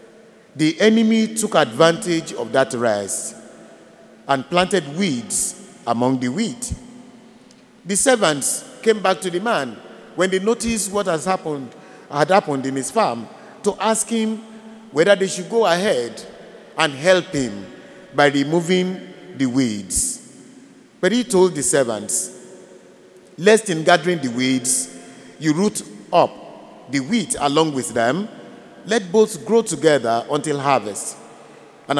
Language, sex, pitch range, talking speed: English, male, 135-215 Hz, 135 wpm